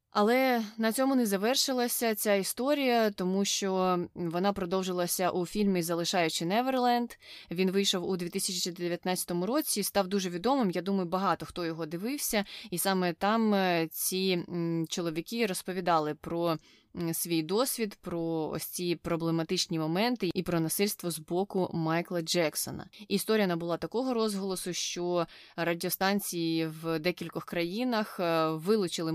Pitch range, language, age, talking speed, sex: 165-205 Hz, Ukrainian, 20-39, 125 wpm, female